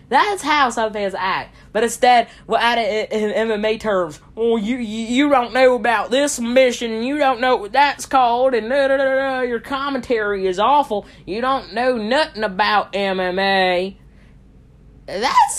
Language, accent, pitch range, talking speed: English, American, 190-260 Hz, 160 wpm